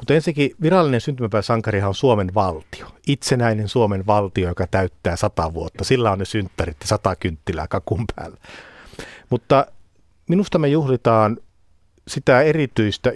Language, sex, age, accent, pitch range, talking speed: Finnish, male, 50-69, native, 95-130 Hz, 130 wpm